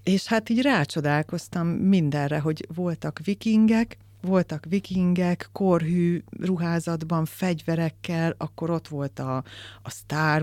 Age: 30-49